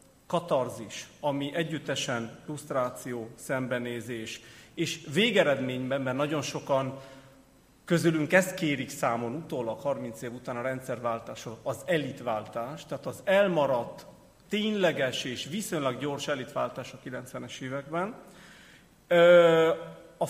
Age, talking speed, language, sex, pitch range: 40-59, 100 wpm, Hungarian, male, 130-175 Hz